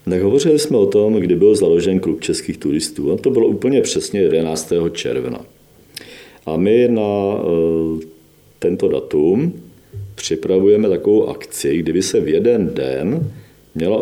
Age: 50-69